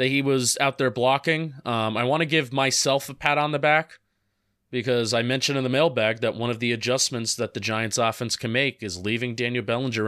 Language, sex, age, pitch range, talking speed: English, male, 30-49, 120-145 Hz, 225 wpm